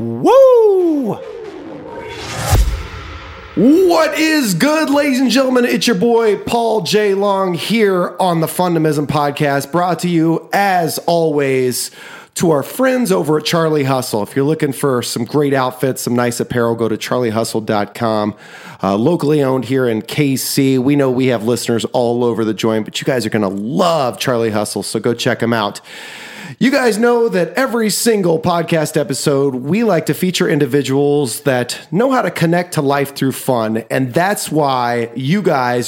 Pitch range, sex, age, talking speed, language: 130-195 Hz, male, 30-49, 165 wpm, English